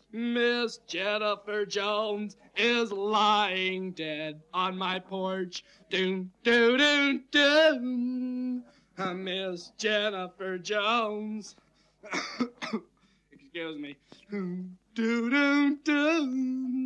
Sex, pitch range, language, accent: male, 190-250 Hz, English, American